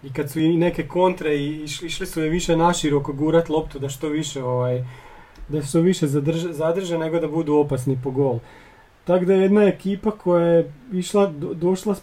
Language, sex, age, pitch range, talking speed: Croatian, male, 30-49, 145-180 Hz, 175 wpm